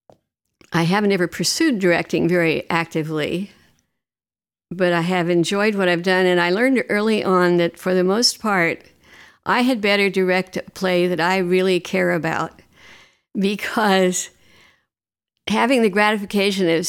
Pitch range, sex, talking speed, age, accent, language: 175-210 Hz, female, 140 wpm, 60-79, American, English